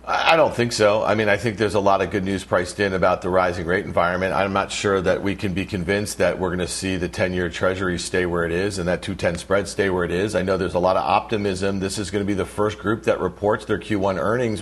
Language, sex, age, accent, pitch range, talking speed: English, male, 50-69, American, 100-130 Hz, 285 wpm